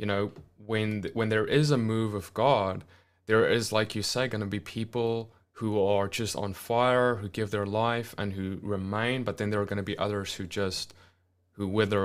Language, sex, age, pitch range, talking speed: English, male, 20-39, 100-120 Hz, 215 wpm